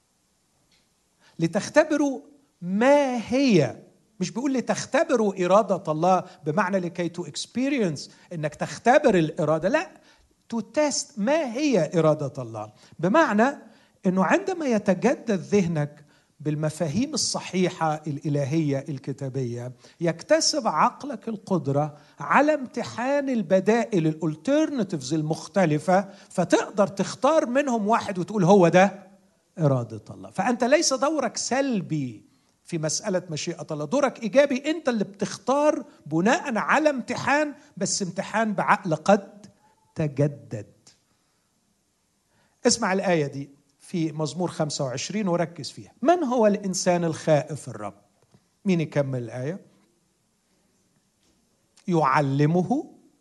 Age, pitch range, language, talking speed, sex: 50-69, 155-240 Hz, Persian, 90 wpm, male